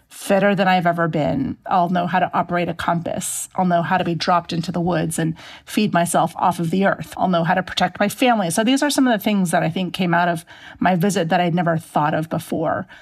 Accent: American